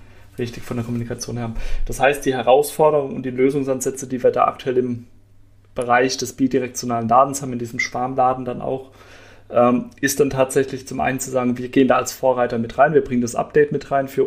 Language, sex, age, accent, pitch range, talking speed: German, male, 30-49, German, 120-135 Hz, 210 wpm